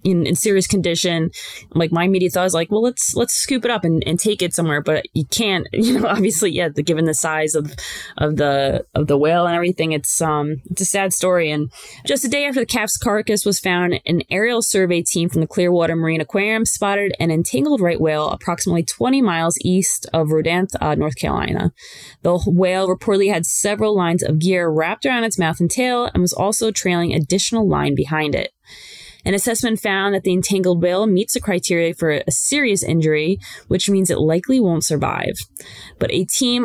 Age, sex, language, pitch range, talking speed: 20-39, female, English, 160-200 Hz, 200 wpm